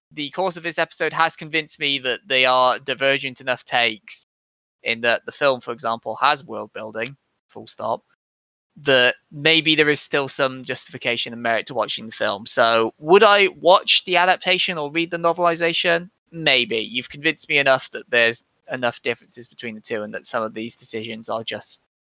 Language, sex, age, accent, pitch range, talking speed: English, male, 20-39, British, 115-155 Hz, 185 wpm